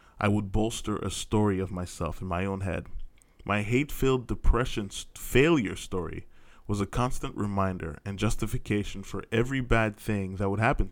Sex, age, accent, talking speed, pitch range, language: male, 20-39, American, 165 wpm, 95-115 Hz, English